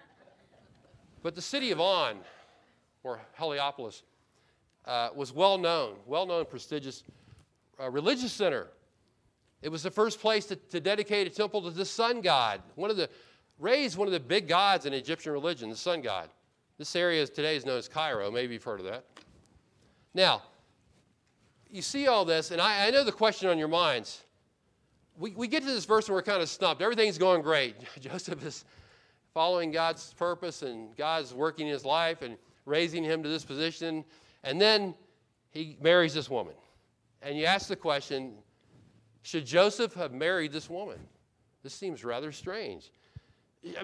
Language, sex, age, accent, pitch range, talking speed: English, male, 40-59, American, 145-200 Hz, 165 wpm